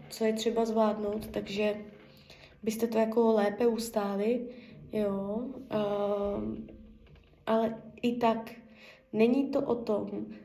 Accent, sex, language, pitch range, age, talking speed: native, female, Czech, 210-245 Hz, 20-39, 105 wpm